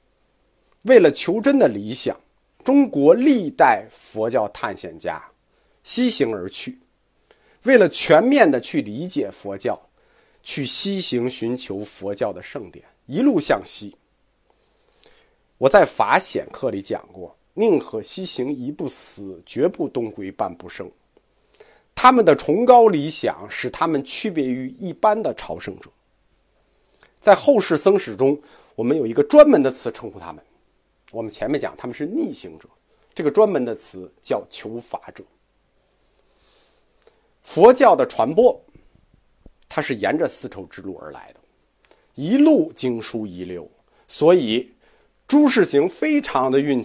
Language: Chinese